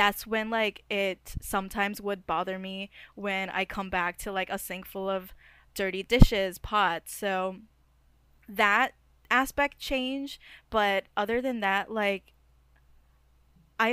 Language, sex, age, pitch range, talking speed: English, female, 10-29, 190-215 Hz, 135 wpm